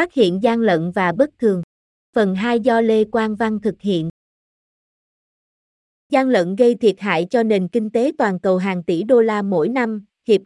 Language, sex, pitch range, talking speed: Vietnamese, female, 195-250 Hz, 190 wpm